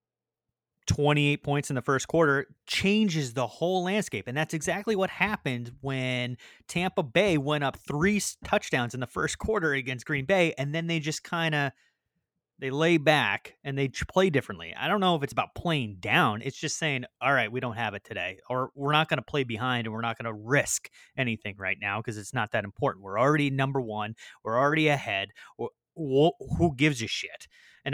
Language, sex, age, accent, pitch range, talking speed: English, male, 30-49, American, 120-160 Hz, 205 wpm